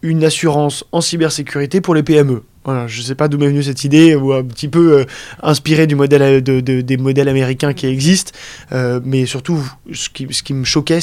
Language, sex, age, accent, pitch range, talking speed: French, male, 20-39, French, 135-160 Hz, 225 wpm